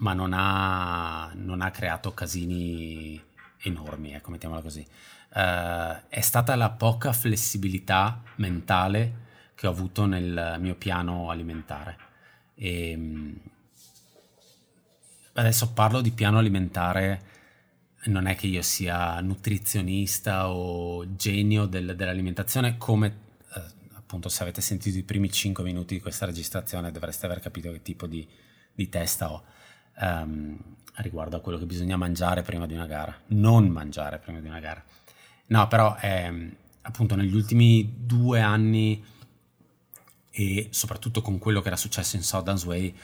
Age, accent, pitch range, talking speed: 30-49, native, 85-105 Hz, 135 wpm